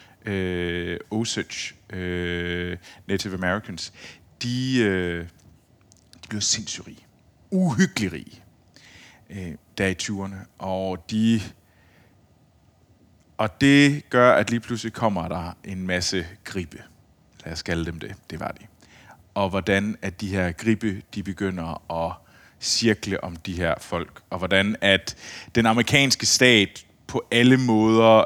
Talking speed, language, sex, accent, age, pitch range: 125 wpm, Danish, male, native, 30-49, 90-110 Hz